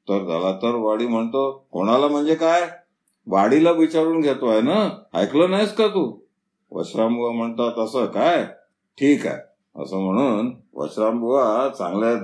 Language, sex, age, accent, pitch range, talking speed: Marathi, male, 50-69, native, 115-145 Hz, 120 wpm